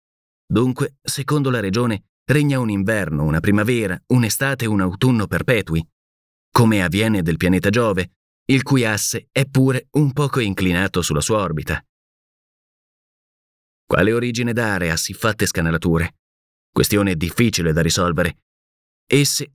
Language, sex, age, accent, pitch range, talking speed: Italian, male, 30-49, native, 90-120 Hz, 130 wpm